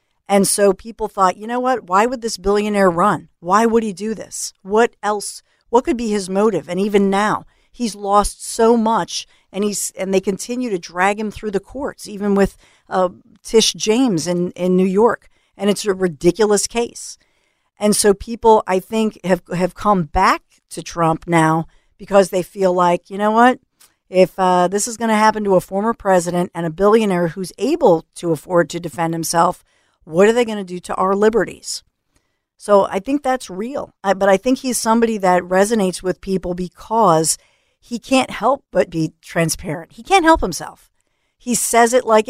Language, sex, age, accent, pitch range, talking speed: English, female, 50-69, American, 180-230 Hz, 190 wpm